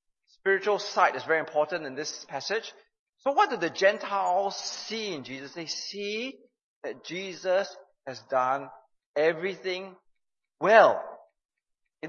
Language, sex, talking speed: English, male, 125 wpm